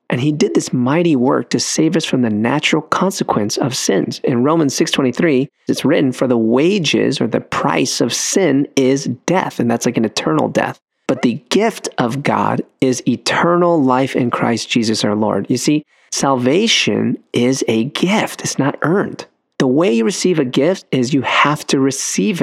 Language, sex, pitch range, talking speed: English, male, 125-160 Hz, 185 wpm